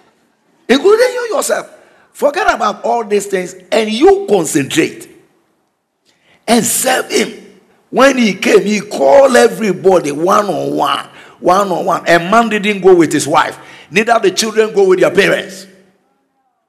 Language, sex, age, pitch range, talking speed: English, male, 60-79, 160-245 Hz, 145 wpm